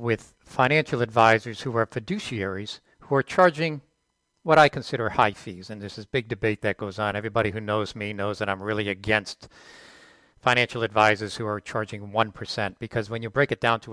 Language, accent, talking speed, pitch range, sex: English, American, 195 wpm, 110-135 Hz, male